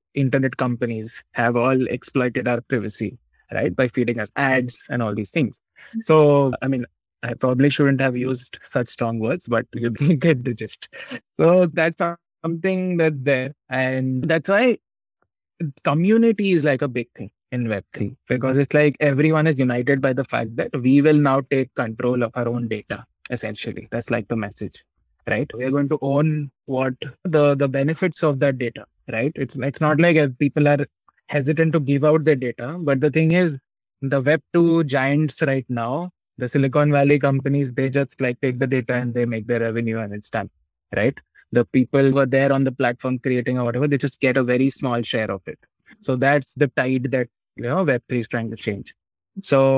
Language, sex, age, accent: English, male, 20-39, Indian